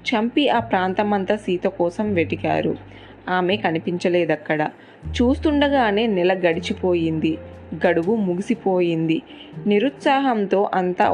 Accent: native